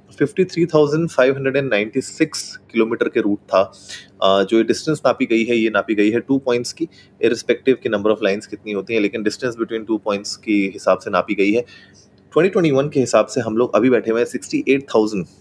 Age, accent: 30-49, native